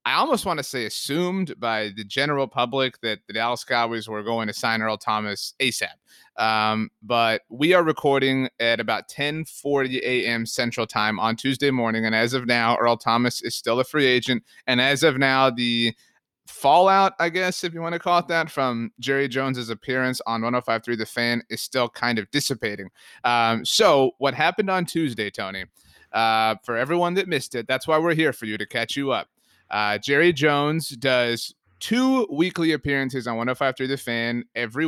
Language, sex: English, male